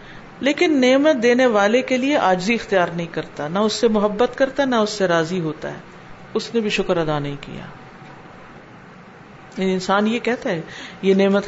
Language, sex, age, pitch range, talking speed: Urdu, female, 50-69, 190-240 Hz, 180 wpm